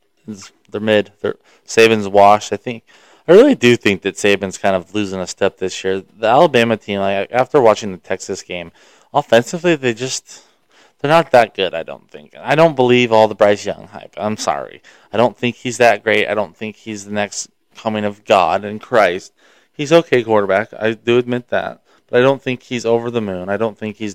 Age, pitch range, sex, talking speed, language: 20-39, 100-120 Hz, male, 210 wpm, English